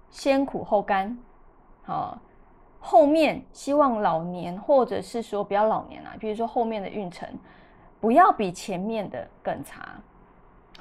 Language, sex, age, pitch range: Chinese, female, 20-39, 195-240 Hz